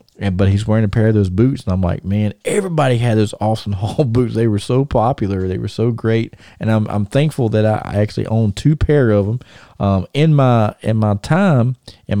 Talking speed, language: 225 wpm, English